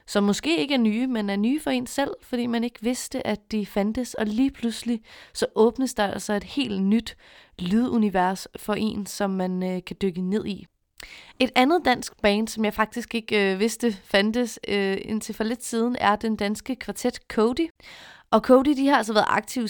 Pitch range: 200-240 Hz